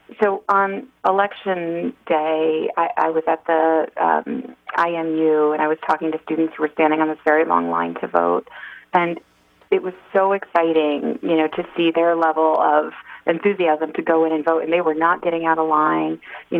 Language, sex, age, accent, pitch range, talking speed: English, female, 30-49, American, 155-175 Hz, 195 wpm